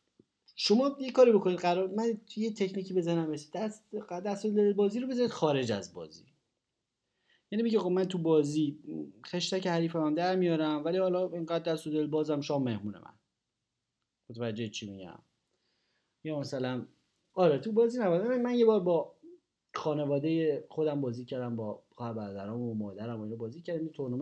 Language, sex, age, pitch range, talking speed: Persian, male, 30-49, 130-190 Hz, 155 wpm